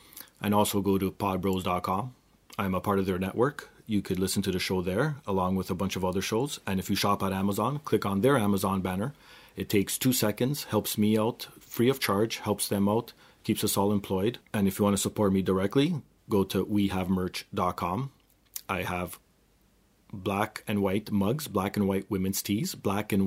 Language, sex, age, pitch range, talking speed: English, male, 30-49, 95-110 Hz, 200 wpm